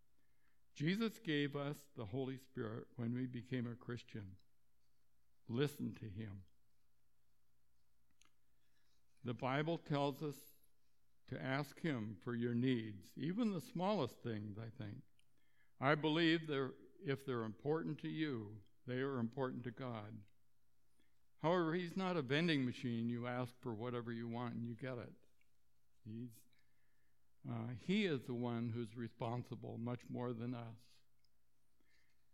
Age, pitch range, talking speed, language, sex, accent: 60-79, 105-140 Hz, 130 wpm, English, male, American